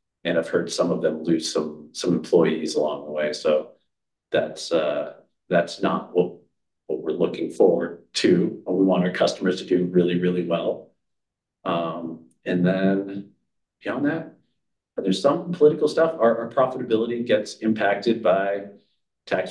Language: English